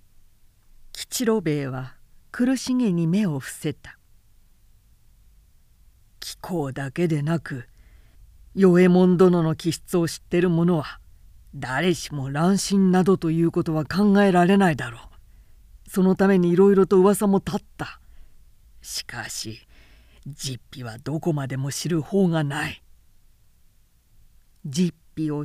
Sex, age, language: female, 40-59, Japanese